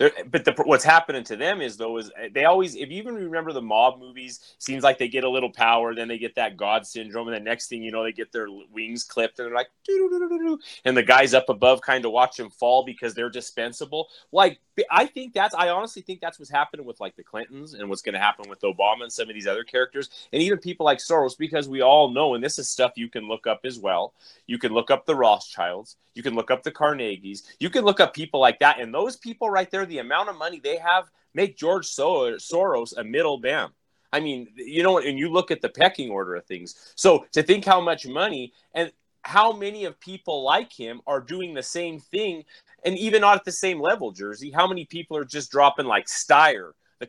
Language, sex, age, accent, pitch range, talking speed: English, male, 30-49, American, 115-185 Hz, 240 wpm